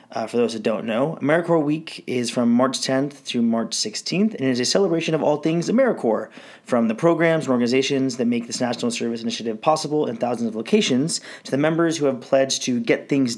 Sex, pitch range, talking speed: male, 120-155 Hz, 220 wpm